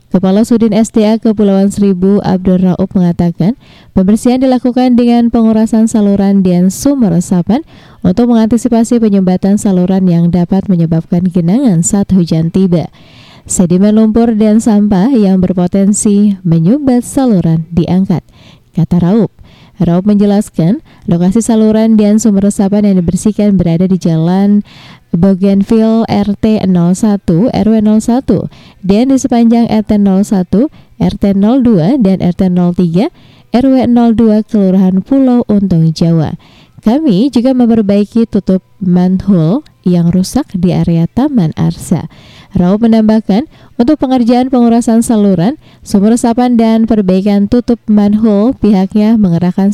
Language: Indonesian